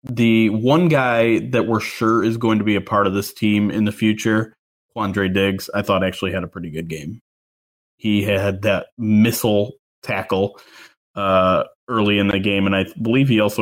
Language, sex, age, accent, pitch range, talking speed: English, male, 20-39, American, 95-115 Hz, 190 wpm